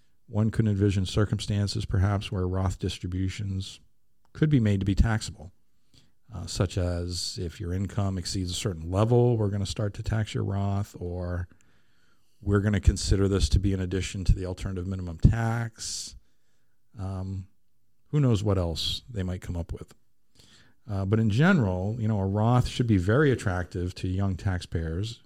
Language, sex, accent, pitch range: English, male, American, 95-110 Hz